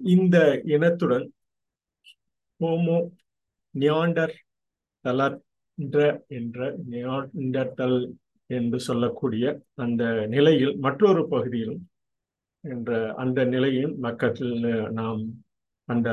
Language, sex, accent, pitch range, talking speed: Tamil, male, native, 125-150 Hz, 70 wpm